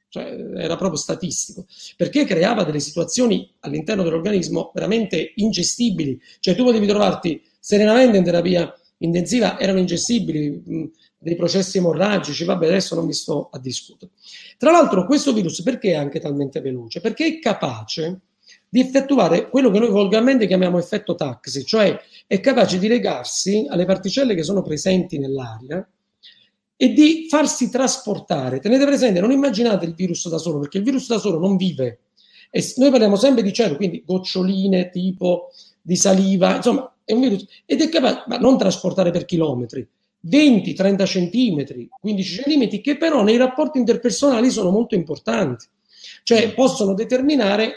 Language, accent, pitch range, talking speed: Italian, native, 175-240 Hz, 150 wpm